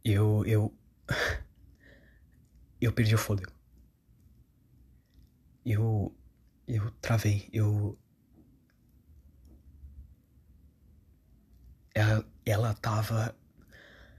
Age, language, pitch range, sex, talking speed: 20-39, Portuguese, 80-115 Hz, male, 55 wpm